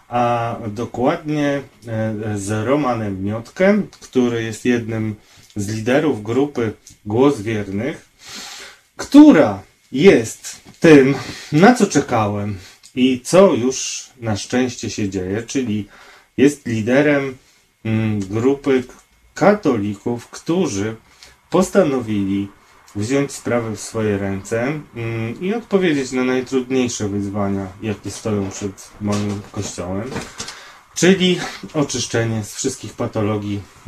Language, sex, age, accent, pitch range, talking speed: Polish, male, 30-49, native, 105-135 Hz, 95 wpm